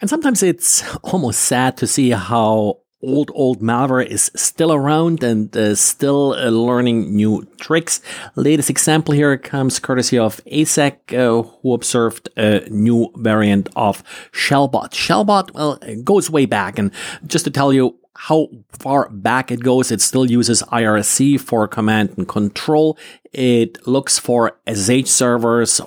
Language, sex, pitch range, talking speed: English, male, 110-140 Hz, 150 wpm